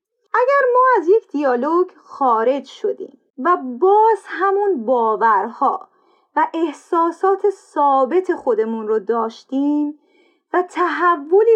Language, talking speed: Persian, 100 wpm